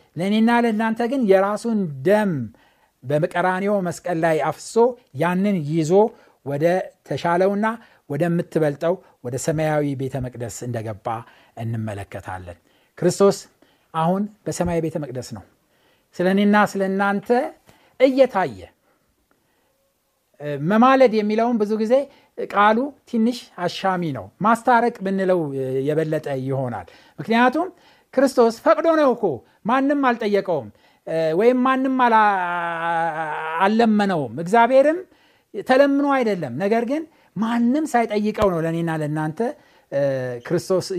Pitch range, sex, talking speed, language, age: 160-240 Hz, male, 85 wpm, Amharic, 60-79